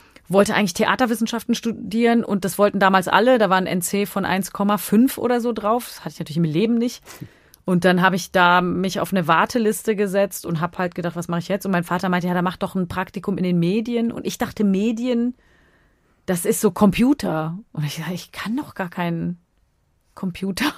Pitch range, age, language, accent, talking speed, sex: 175-225 Hz, 30-49, German, German, 210 wpm, female